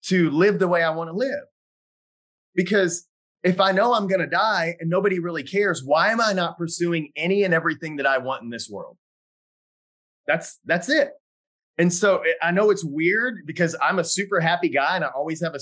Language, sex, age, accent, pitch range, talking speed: English, male, 30-49, American, 155-190 Hz, 210 wpm